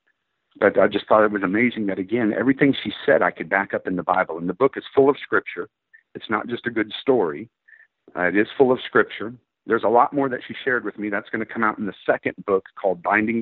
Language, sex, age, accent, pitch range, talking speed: English, male, 50-69, American, 95-150 Hz, 260 wpm